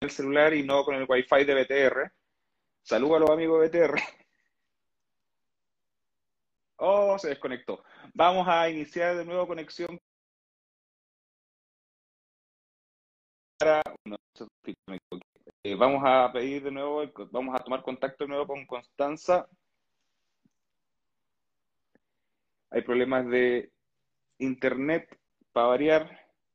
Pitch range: 125-160 Hz